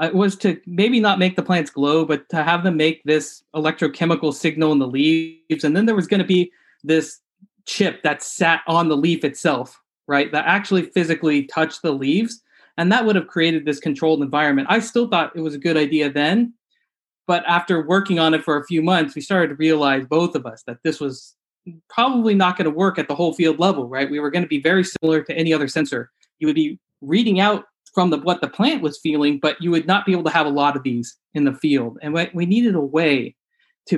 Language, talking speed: English, 235 wpm